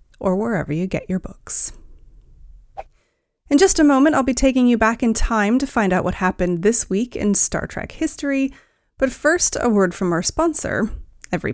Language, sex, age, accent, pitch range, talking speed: English, female, 30-49, American, 185-240 Hz, 185 wpm